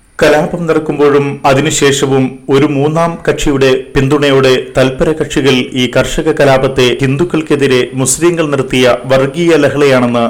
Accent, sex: native, male